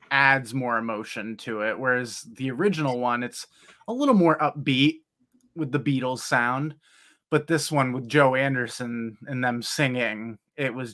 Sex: male